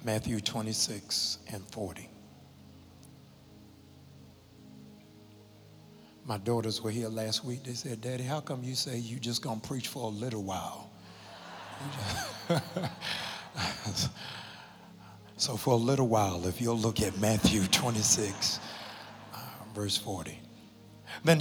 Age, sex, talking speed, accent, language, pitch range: 60-79, male, 115 wpm, American, English, 100-125 Hz